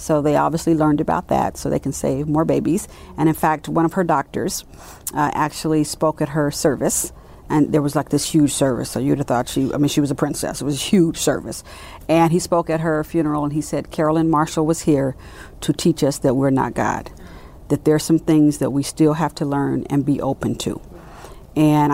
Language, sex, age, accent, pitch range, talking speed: English, female, 50-69, American, 145-170 Hz, 225 wpm